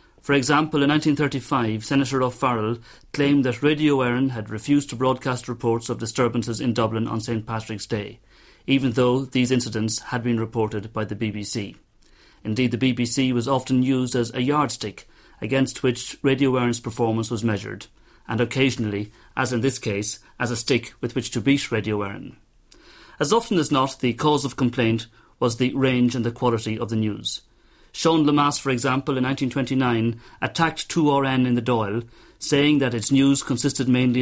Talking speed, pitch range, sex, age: 170 wpm, 115-135 Hz, male, 40-59